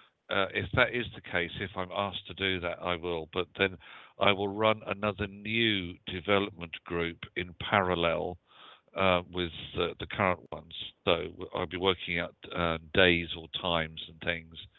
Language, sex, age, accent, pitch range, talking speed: English, male, 50-69, British, 90-105 Hz, 170 wpm